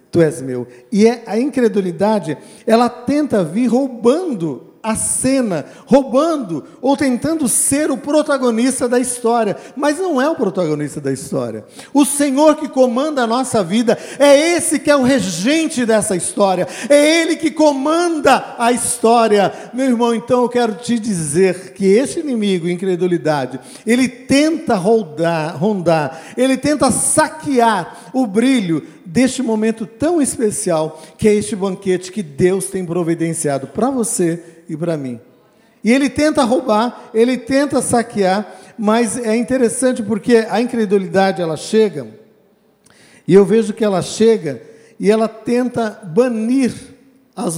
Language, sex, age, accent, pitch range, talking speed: Portuguese, male, 50-69, Brazilian, 175-255 Hz, 140 wpm